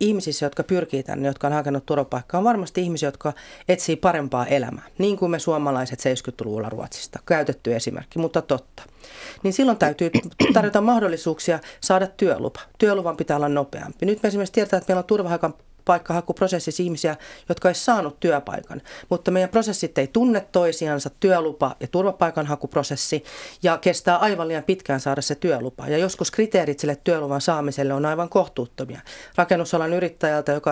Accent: native